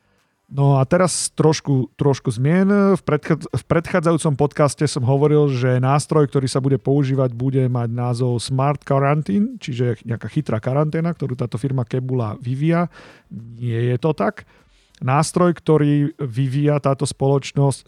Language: Slovak